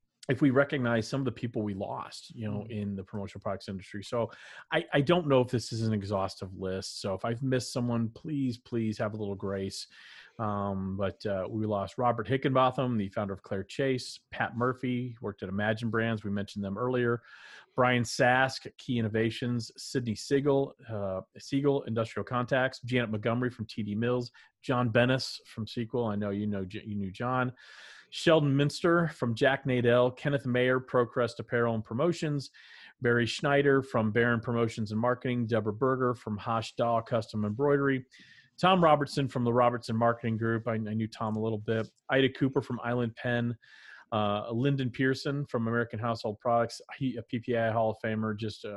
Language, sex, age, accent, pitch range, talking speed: English, male, 40-59, American, 110-130 Hz, 175 wpm